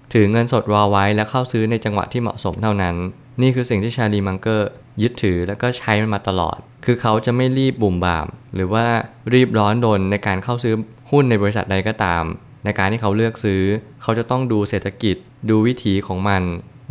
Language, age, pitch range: Thai, 20-39, 100-120 Hz